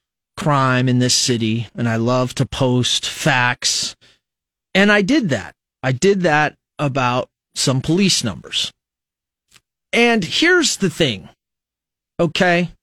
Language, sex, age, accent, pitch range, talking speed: English, male, 30-49, American, 130-160 Hz, 120 wpm